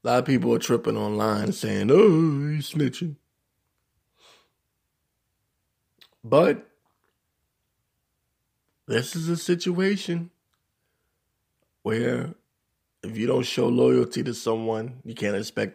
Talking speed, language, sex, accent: 105 wpm, English, male, American